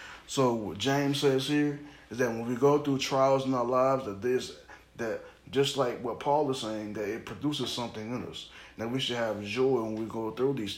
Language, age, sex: English, 10-29, male